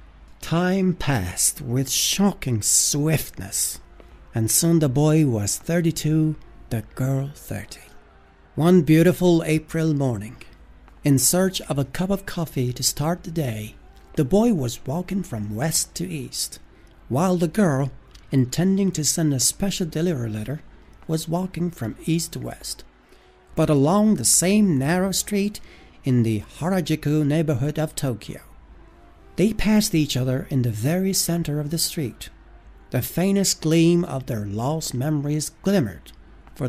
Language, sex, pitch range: Persian, male, 110-170 Hz